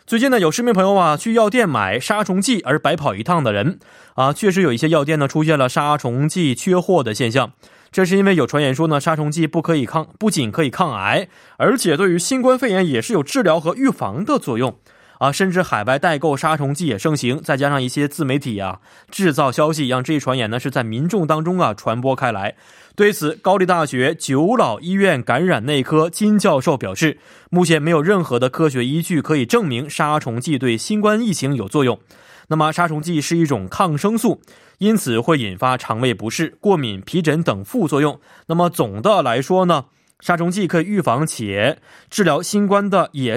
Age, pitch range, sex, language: 20-39, 130-180 Hz, male, Korean